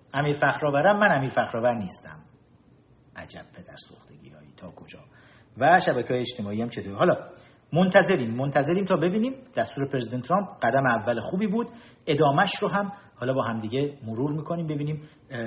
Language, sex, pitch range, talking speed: Persian, male, 115-155 Hz, 150 wpm